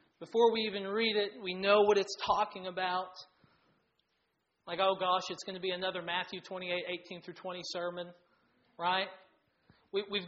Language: English